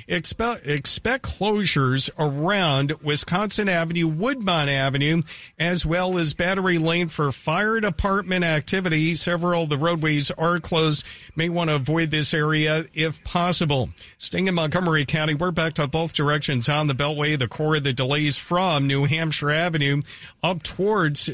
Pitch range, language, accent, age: 150-185 Hz, English, American, 50-69